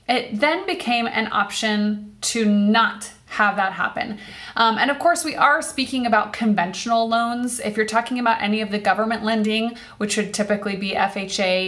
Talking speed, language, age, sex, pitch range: 175 wpm, English, 20-39, female, 210-270 Hz